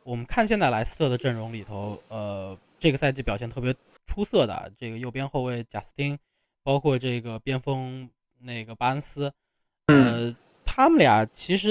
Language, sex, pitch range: Chinese, male, 120-155 Hz